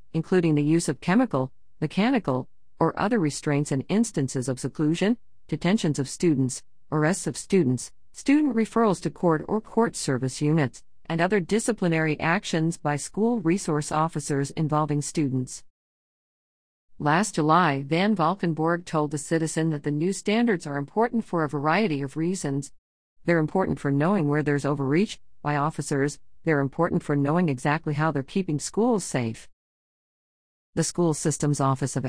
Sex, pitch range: female, 140-190 Hz